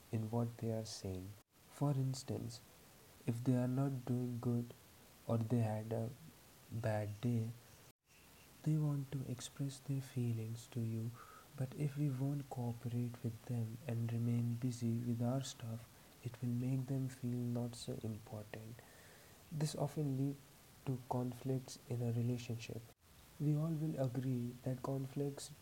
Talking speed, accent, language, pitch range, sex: 145 wpm, Indian, English, 120-135 Hz, male